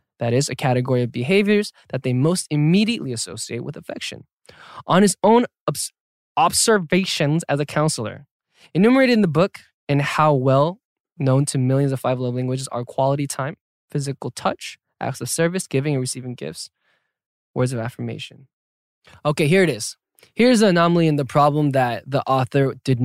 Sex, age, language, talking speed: male, 10-29, English, 165 wpm